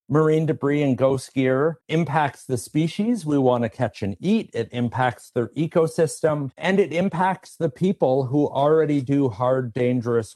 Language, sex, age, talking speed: English, male, 50-69, 160 wpm